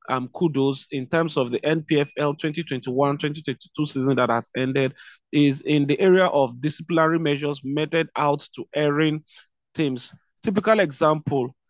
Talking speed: 135 wpm